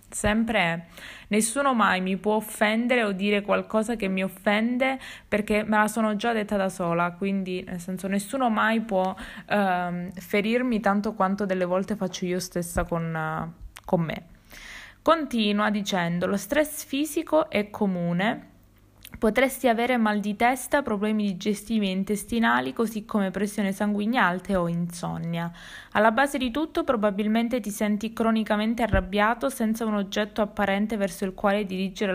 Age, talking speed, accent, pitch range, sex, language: 20-39, 145 wpm, native, 190-225 Hz, female, Italian